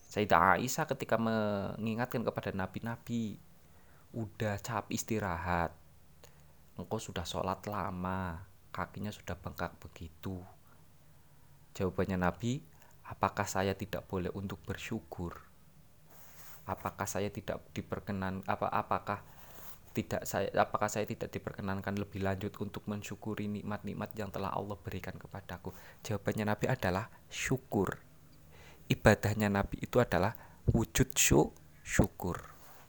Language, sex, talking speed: Indonesian, male, 105 wpm